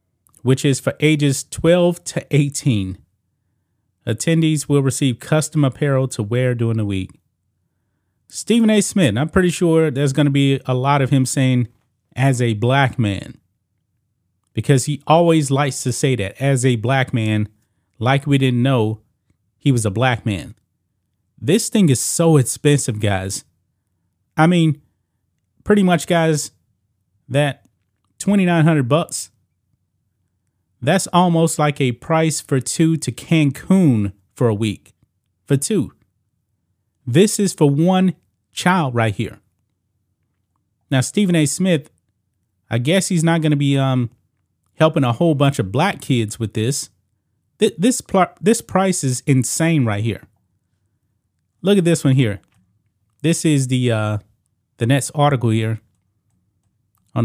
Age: 30-49